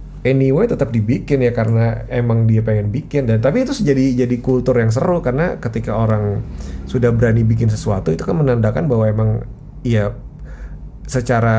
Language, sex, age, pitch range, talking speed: Indonesian, male, 20-39, 110-140 Hz, 160 wpm